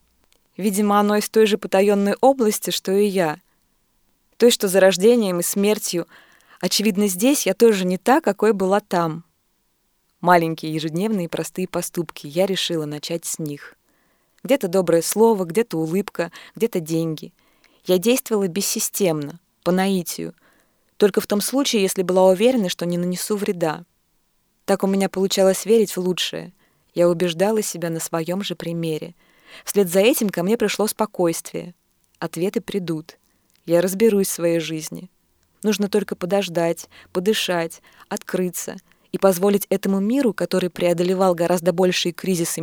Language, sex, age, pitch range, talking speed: Russian, female, 20-39, 170-205 Hz, 140 wpm